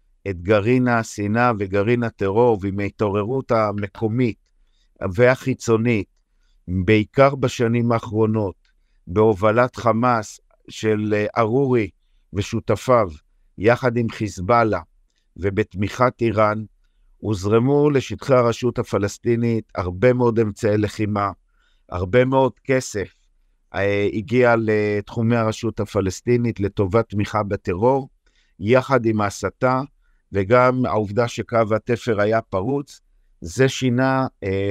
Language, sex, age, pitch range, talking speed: Hebrew, male, 50-69, 100-125 Hz, 90 wpm